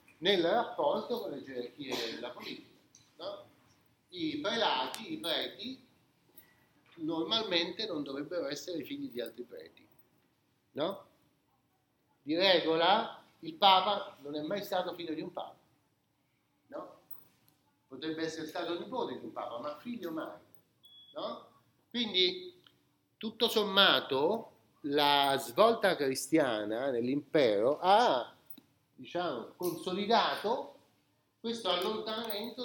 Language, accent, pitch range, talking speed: Italian, native, 135-195 Hz, 105 wpm